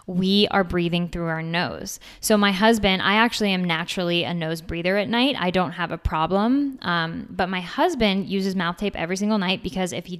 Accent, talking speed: American, 210 wpm